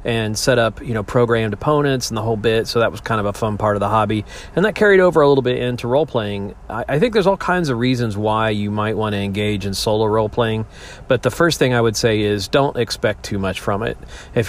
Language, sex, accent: English, male, American